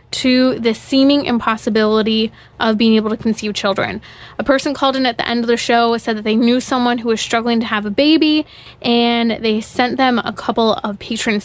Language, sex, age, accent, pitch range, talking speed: English, female, 20-39, American, 225-260 Hz, 210 wpm